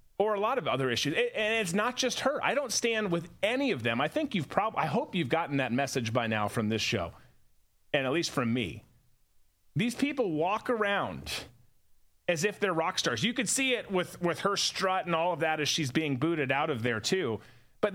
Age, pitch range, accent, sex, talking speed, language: 30-49, 145-235 Hz, American, male, 225 wpm, English